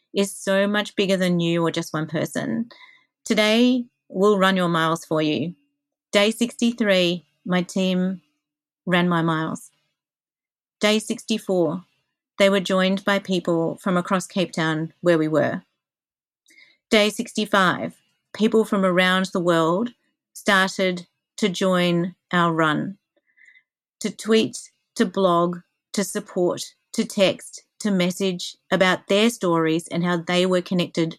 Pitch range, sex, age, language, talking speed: 175-210 Hz, female, 40-59, English, 130 wpm